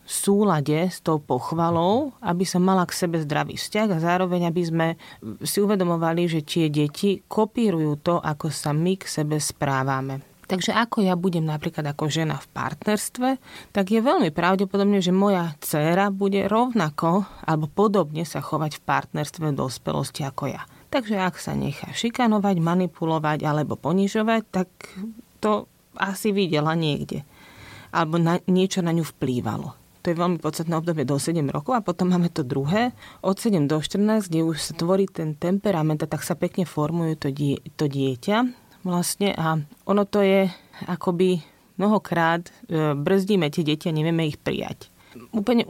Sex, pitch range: female, 155-195 Hz